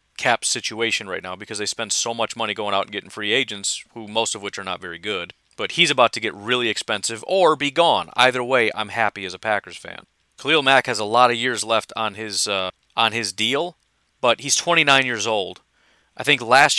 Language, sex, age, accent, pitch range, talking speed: English, male, 40-59, American, 110-150 Hz, 230 wpm